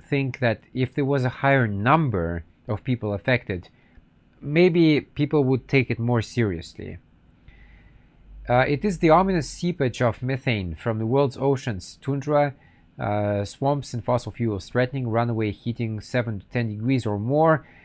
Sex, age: male, 40-59